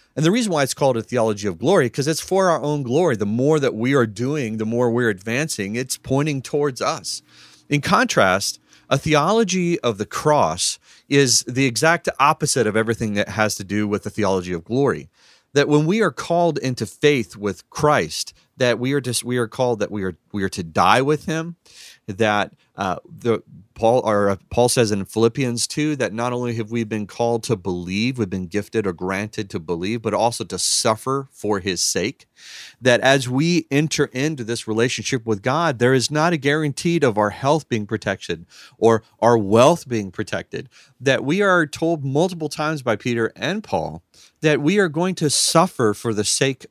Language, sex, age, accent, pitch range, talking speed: English, male, 30-49, American, 110-150 Hz, 195 wpm